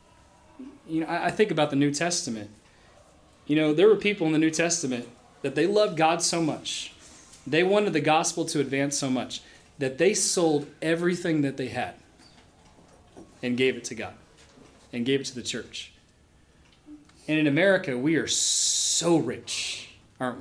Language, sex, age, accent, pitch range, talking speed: English, male, 30-49, American, 125-170 Hz, 170 wpm